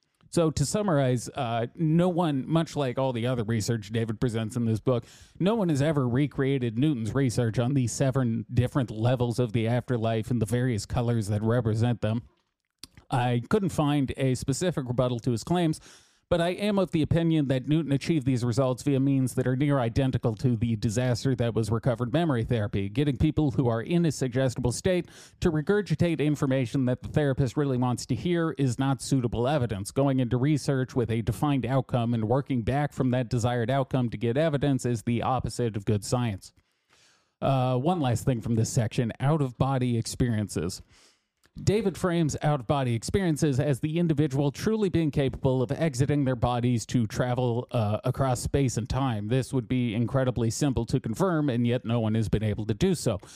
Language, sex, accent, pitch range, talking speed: English, male, American, 120-145 Hz, 185 wpm